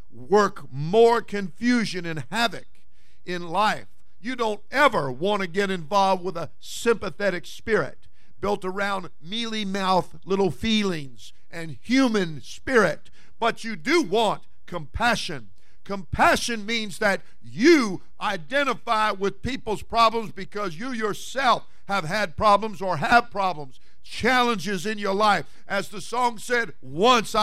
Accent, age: American, 50-69